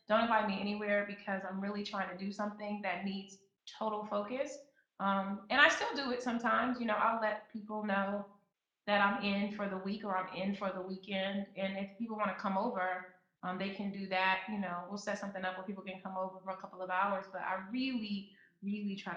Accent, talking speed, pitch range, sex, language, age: American, 230 wpm, 185-205 Hz, female, English, 20-39